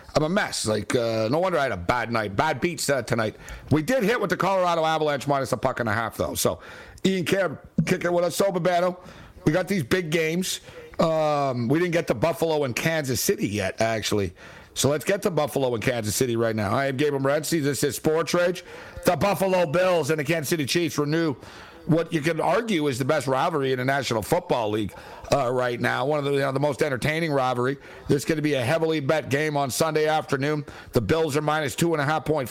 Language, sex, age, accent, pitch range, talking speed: English, male, 60-79, American, 135-165 Hz, 240 wpm